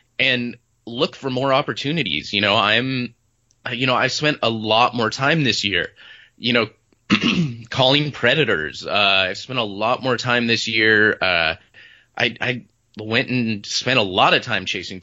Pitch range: 105-130 Hz